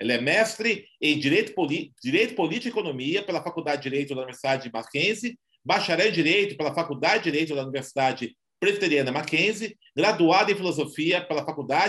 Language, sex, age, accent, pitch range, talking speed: Portuguese, male, 40-59, Brazilian, 145-190 Hz, 170 wpm